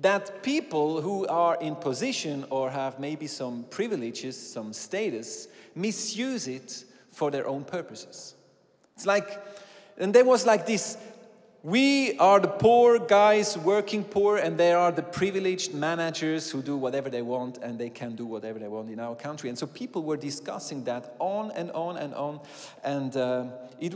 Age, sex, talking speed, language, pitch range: 40-59, male, 170 wpm, English, 130-190 Hz